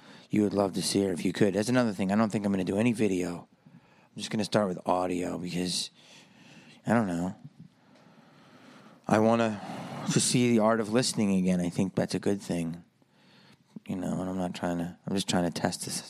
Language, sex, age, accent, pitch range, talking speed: English, male, 30-49, American, 95-140 Hz, 225 wpm